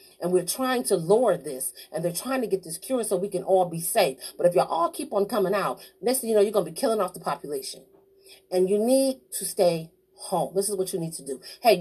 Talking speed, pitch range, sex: 265 wpm, 180-225 Hz, female